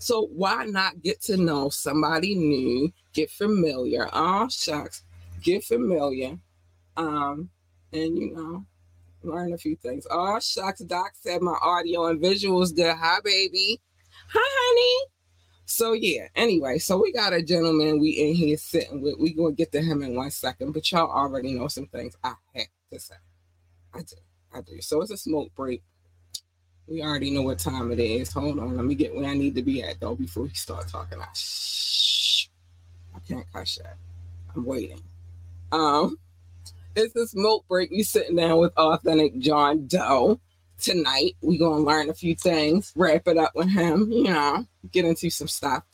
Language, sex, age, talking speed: English, female, 20-39, 180 wpm